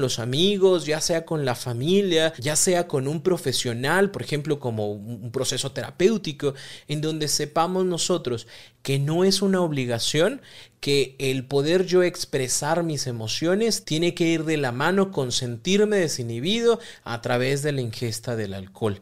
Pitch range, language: 135-180 Hz, Spanish